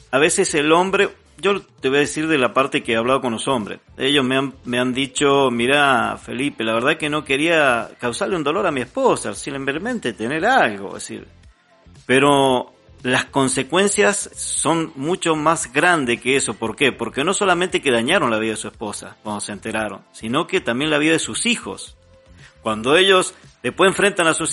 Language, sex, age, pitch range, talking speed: Spanish, male, 40-59, 115-170 Hz, 200 wpm